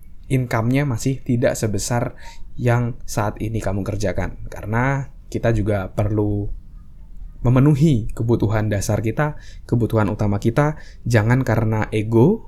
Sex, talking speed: male, 110 wpm